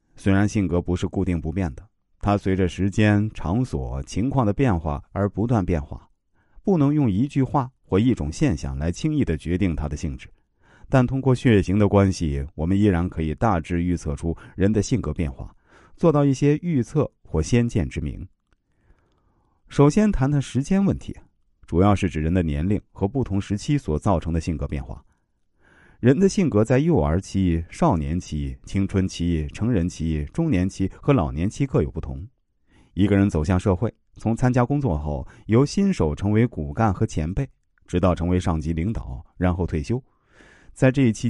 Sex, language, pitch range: male, Chinese, 80-120 Hz